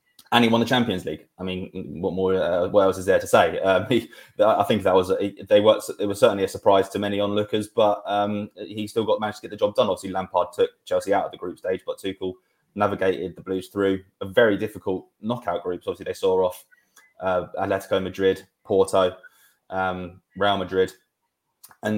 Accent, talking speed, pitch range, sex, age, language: British, 210 wpm, 95-105 Hz, male, 20-39, English